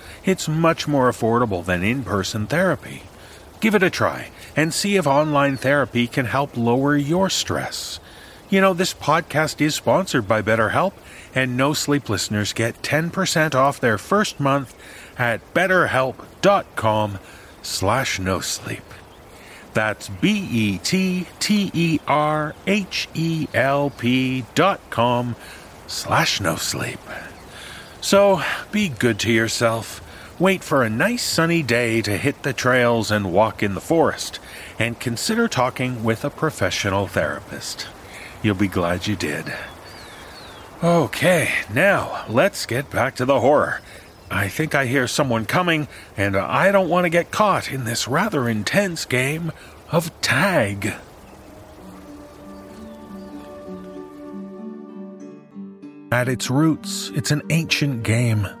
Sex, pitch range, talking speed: male, 100-155 Hz, 120 wpm